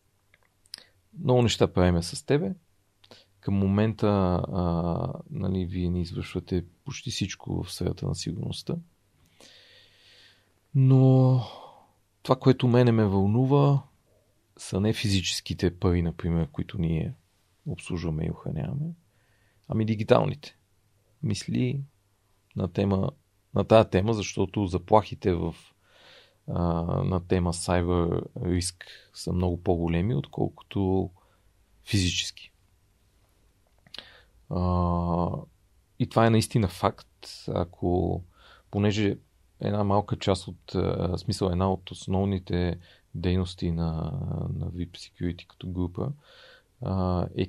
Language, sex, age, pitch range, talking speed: Bulgarian, male, 40-59, 90-110 Hz, 95 wpm